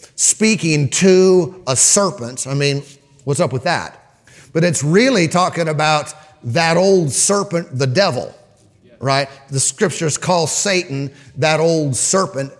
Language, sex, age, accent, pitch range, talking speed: English, male, 40-59, American, 140-180 Hz, 135 wpm